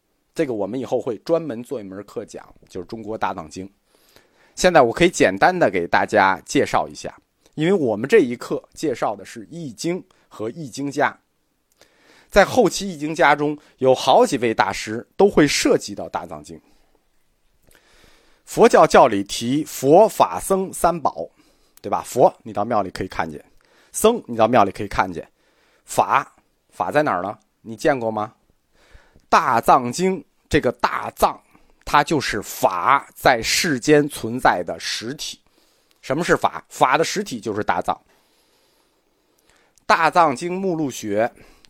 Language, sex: Chinese, male